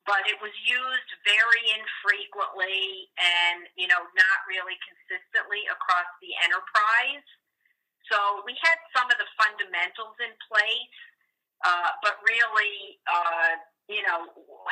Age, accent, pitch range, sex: 50-69, American, 175-215 Hz, female